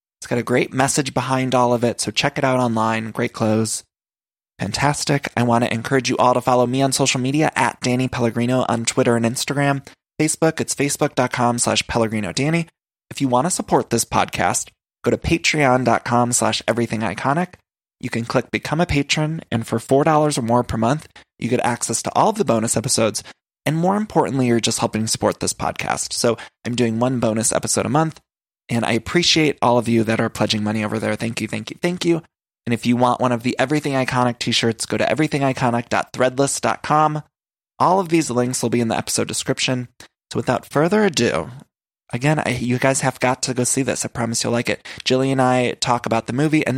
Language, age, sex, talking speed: English, 20-39, male, 205 wpm